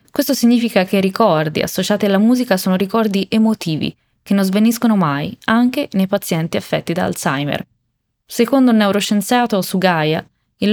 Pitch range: 170-220 Hz